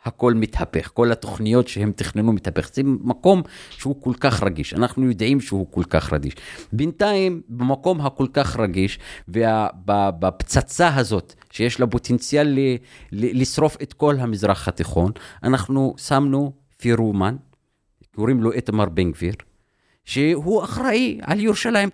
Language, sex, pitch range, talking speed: Hebrew, male, 95-155 Hz, 125 wpm